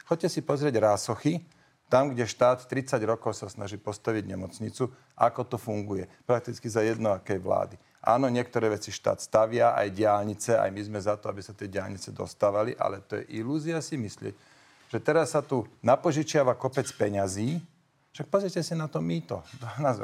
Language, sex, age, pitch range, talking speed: Slovak, male, 40-59, 110-135 Hz, 175 wpm